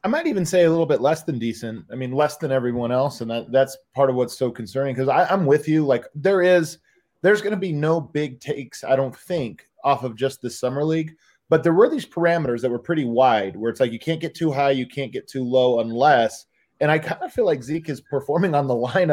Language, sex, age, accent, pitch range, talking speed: English, male, 20-39, American, 125-165 Hz, 255 wpm